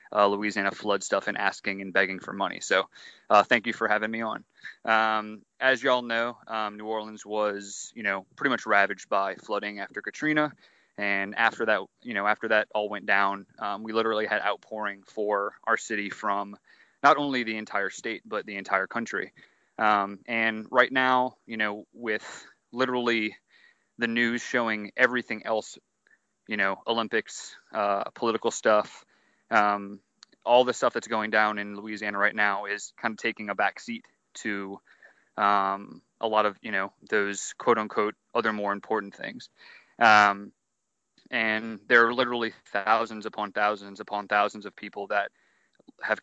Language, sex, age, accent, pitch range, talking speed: English, male, 30-49, American, 100-115 Hz, 165 wpm